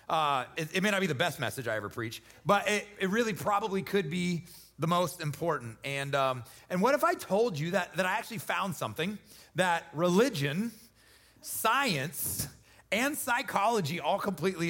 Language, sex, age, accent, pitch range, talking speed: English, male, 30-49, American, 180-240 Hz, 170 wpm